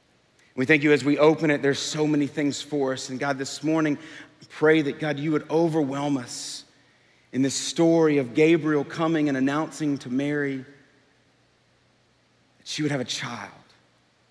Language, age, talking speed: English, 40-59, 170 wpm